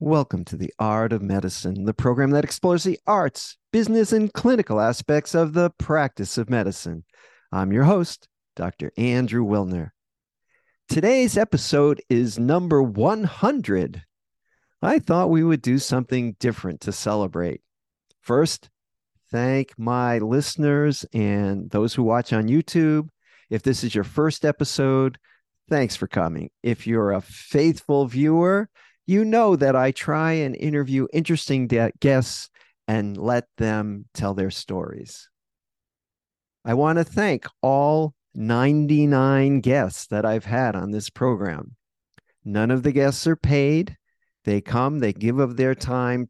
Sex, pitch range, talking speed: male, 110-150 Hz, 135 wpm